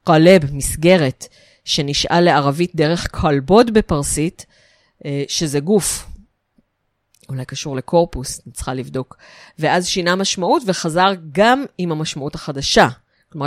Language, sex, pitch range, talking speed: Hebrew, female, 145-185 Hz, 100 wpm